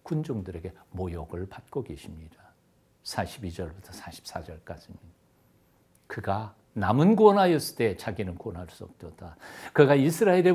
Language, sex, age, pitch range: Korean, male, 60-79, 95-160 Hz